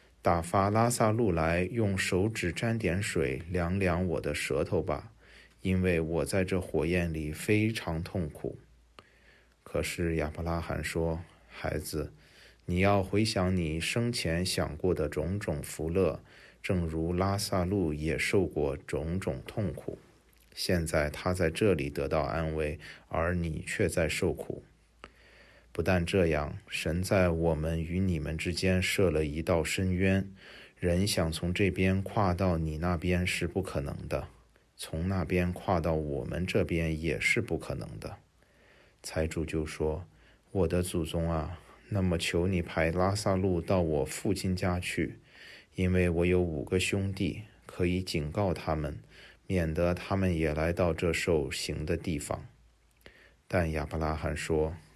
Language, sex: English, male